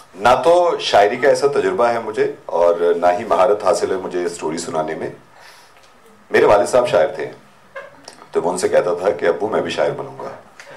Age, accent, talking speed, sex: 40-59, native, 190 wpm, male